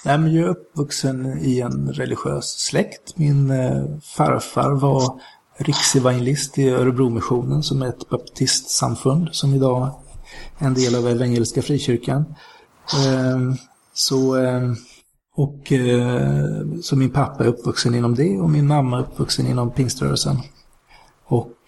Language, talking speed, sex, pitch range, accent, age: Swedish, 130 wpm, male, 125-150 Hz, native, 30-49